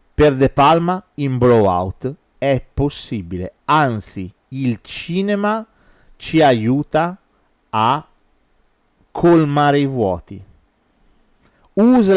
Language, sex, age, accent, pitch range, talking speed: Italian, male, 40-59, native, 105-145 Hz, 85 wpm